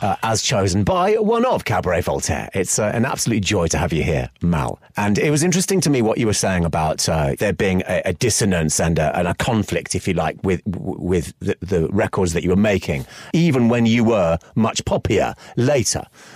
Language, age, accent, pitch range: English, 30-49, British, 95-125 Hz